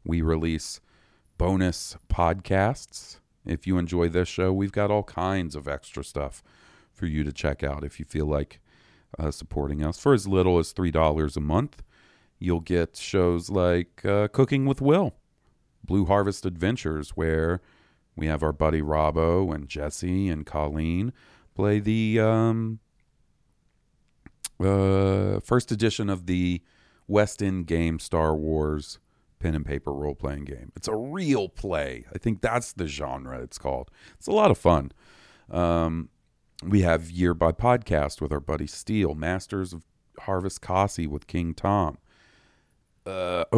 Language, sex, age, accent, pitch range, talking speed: English, male, 40-59, American, 80-110 Hz, 150 wpm